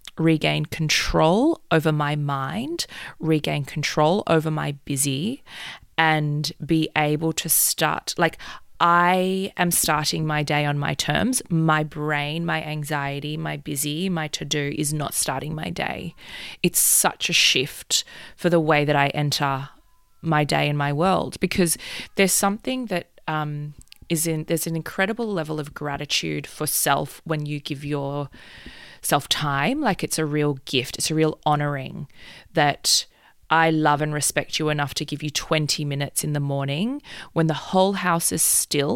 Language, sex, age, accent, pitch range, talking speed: English, female, 20-39, Australian, 145-170 Hz, 160 wpm